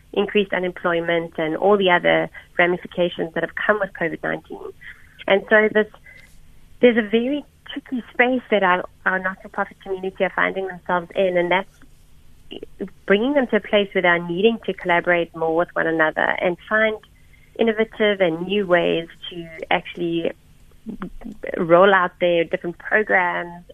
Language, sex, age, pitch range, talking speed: English, female, 30-49, 175-210 Hz, 145 wpm